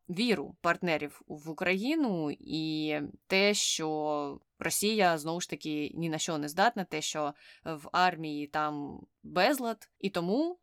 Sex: female